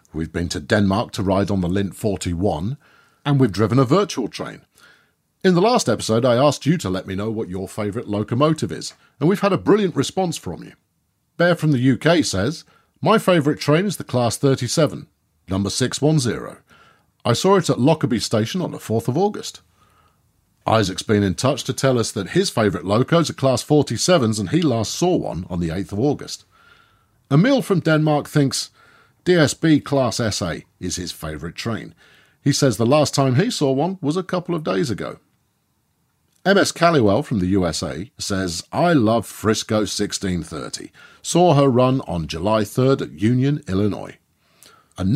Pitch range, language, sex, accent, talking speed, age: 100-150 Hz, English, male, British, 180 wpm, 40-59